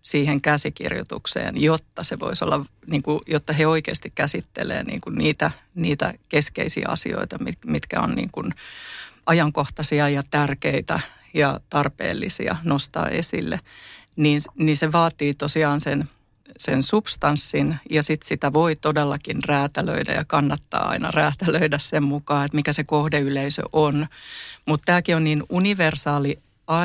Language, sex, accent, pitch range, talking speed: Finnish, female, native, 145-155 Hz, 130 wpm